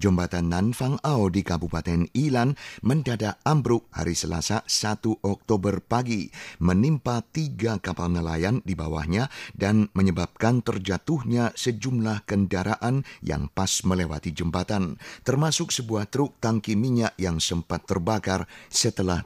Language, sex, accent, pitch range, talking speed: German, male, Indonesian, 90-115 Hz, 115 wpm